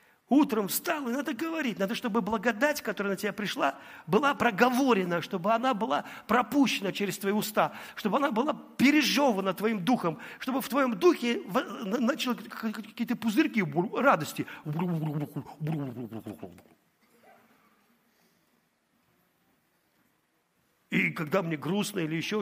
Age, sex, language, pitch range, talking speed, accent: 50-69, male, Russian, 150-220 Hz, 110 wpm, native